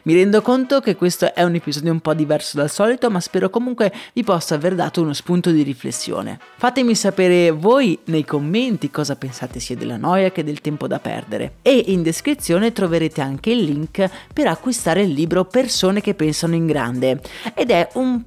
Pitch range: 145-190 Hz